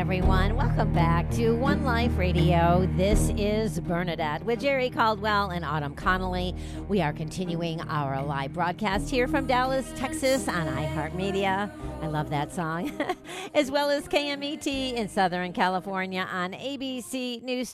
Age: 40-59